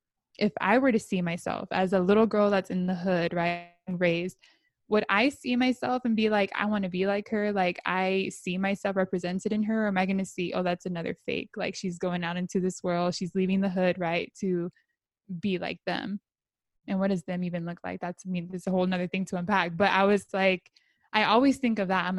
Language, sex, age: English, female, 20-39